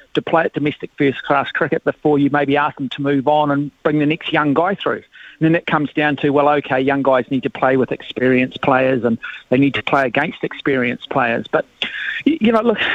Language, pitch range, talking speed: English, 135-155 Hz, 225 wpm